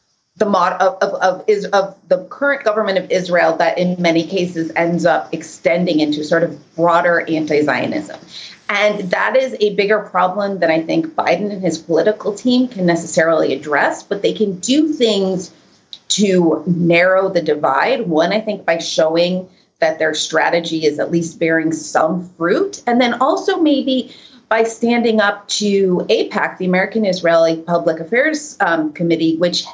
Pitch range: 165-210 Hz